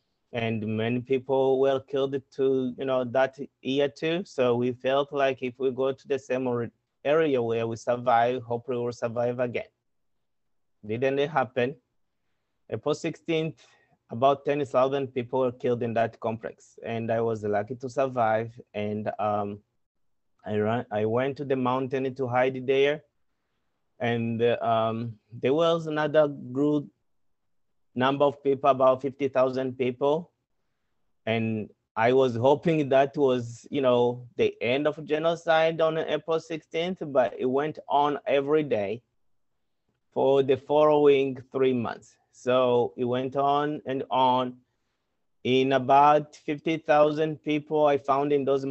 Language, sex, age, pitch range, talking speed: English, male, 30-49, 120-145 Hz, 140 wpm